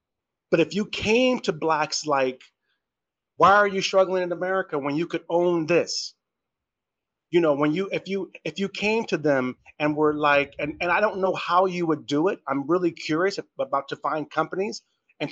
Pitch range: 150-190 Hz